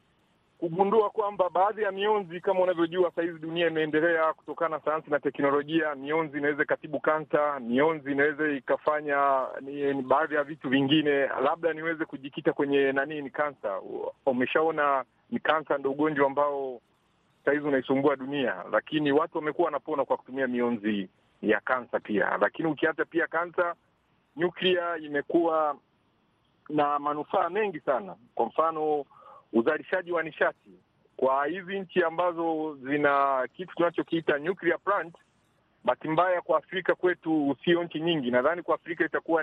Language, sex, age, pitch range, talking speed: Swahili, male, 50-69, 140-175 Hz, 135 wpm